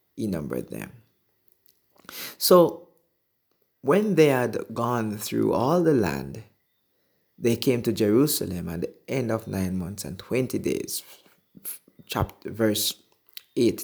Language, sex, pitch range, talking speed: English, male, 100-130 Hz, 120 wpm